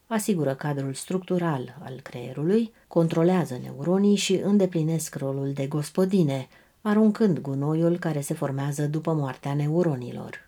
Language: Romanian